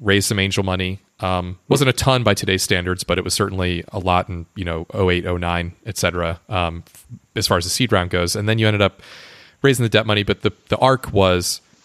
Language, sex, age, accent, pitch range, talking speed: English, male, 30-49, American, 90-110 Hz, 250 wpm